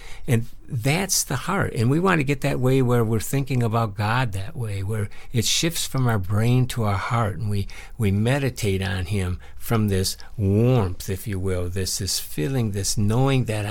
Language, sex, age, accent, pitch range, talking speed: English, male, 60-79, American, 95-120 Hz, 195 wpm